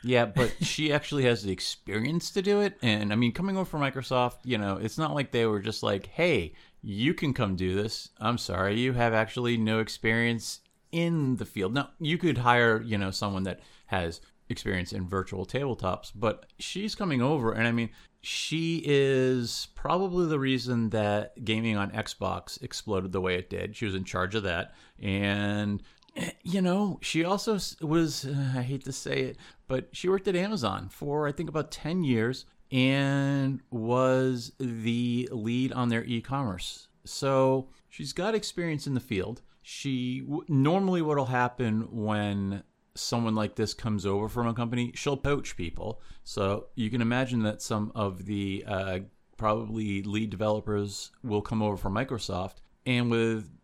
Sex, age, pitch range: male, 30-49, 105-140 Hz